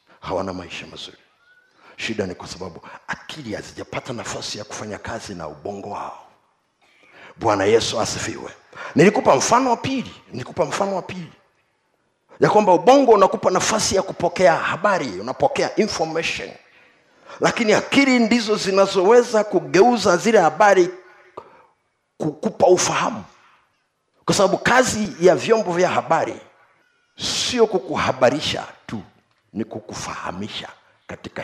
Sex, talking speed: male, 115 wpm